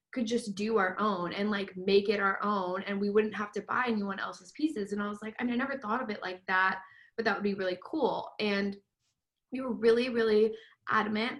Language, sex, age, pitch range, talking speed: English, female, 20-39, 195-230 Hz, 235 wpm